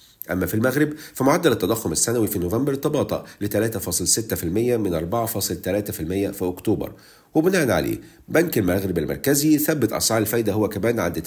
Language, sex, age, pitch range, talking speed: Arabic, male, 50-69, 100-140 Hz, 145 wpm